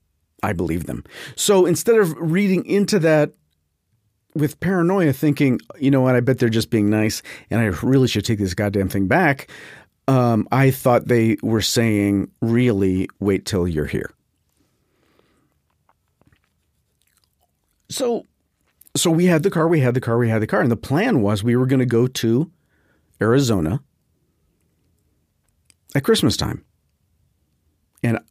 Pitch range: 95-135 Hz